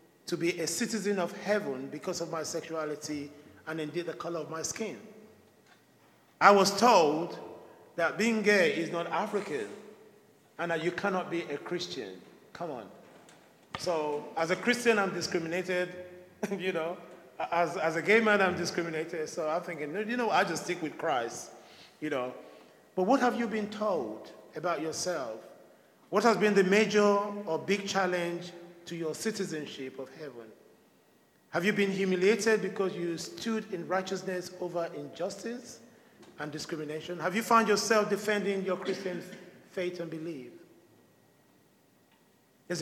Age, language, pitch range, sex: 40-59, English, 165-205 Hz, male